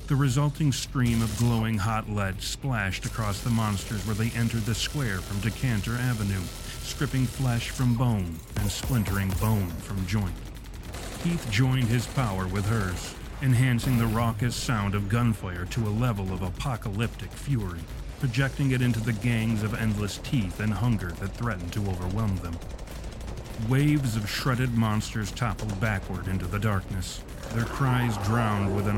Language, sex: English, male